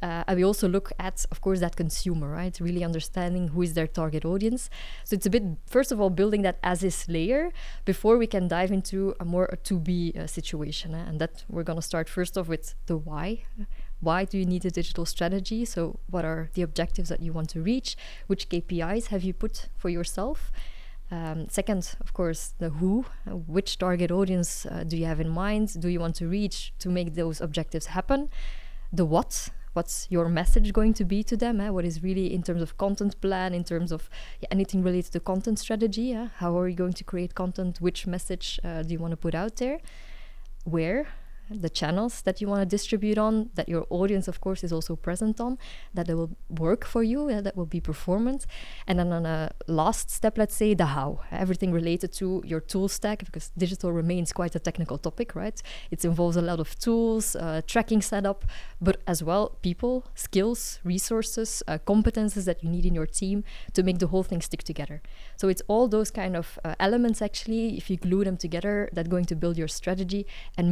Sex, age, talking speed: female, 20-39, 210 wpm